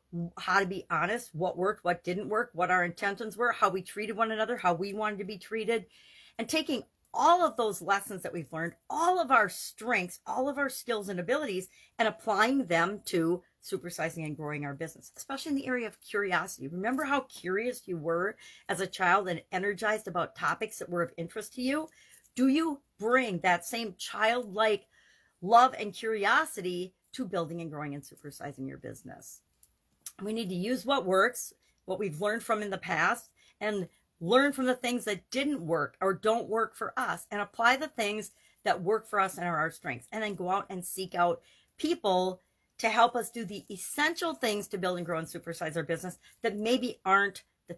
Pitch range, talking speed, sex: 175-230 Hz, 200 wpm, female